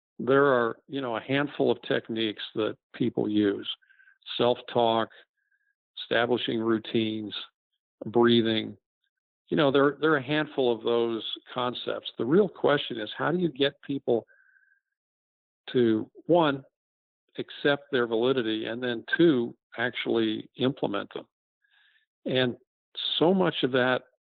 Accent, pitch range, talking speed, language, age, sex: American, 115-160 Hz, 125 wpm, English, 50-69, male